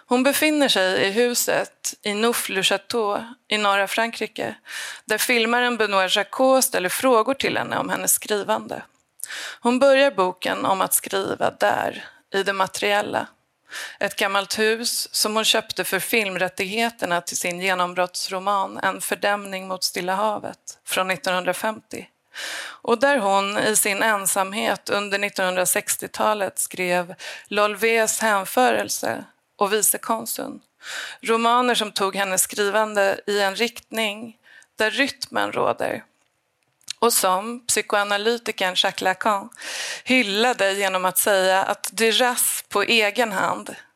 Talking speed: 120 wpm